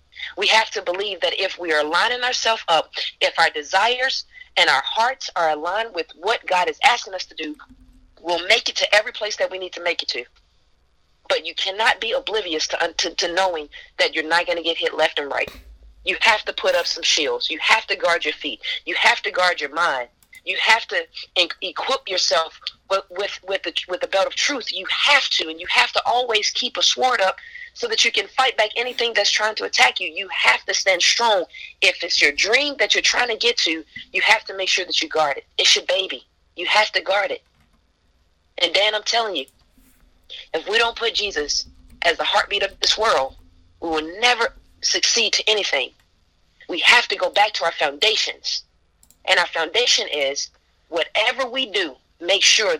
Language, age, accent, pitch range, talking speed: English, 40-59, American, 165-240 Hz, 215 wpm